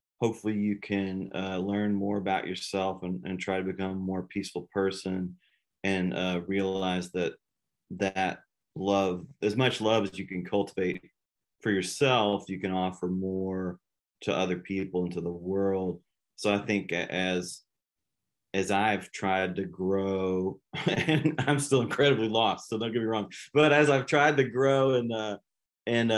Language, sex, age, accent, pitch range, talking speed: English, male, 30-49, American, 95-105 Hz, 165 wpm